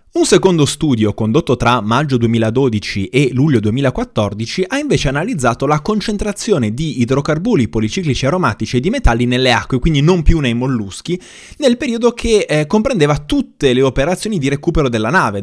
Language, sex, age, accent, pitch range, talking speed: Italian, male, 20-39, native, 115-155 Hz, 160 wpm